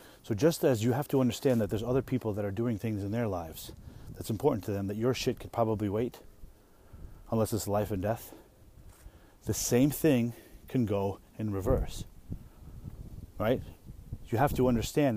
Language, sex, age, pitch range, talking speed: English, male, 30-49, 100-130 Hz, 180 wpm